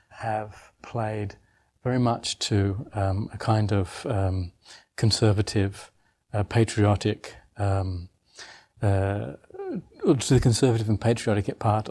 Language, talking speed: English, 105 wpm